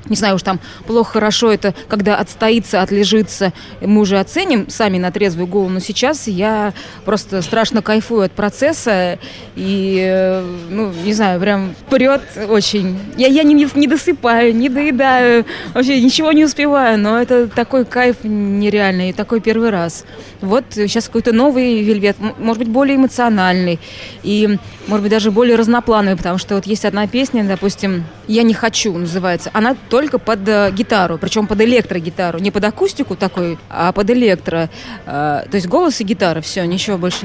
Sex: female